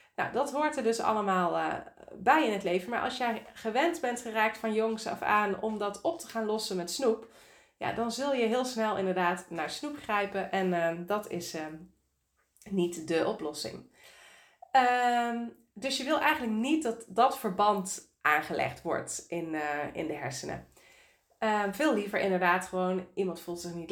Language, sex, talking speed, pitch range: Dutch, female, 175 wpm, 190-235 Hz